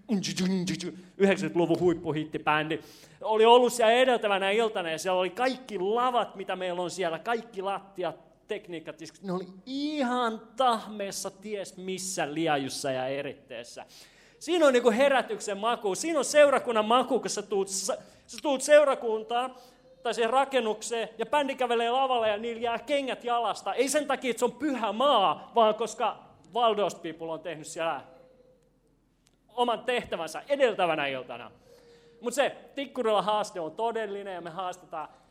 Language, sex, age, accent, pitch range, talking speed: Finnish, male, 30-49, native, 165-240 Hz, 145 wpm